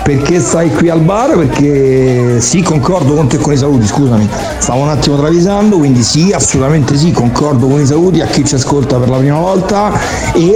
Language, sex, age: Italian, male, 60-79